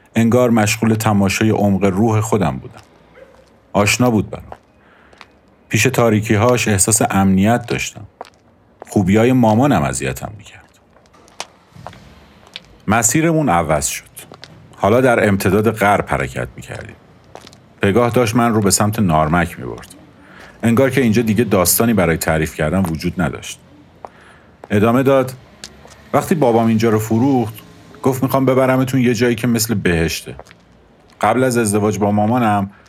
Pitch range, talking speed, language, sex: 95-120 Hz, 125 wpm, Persian, male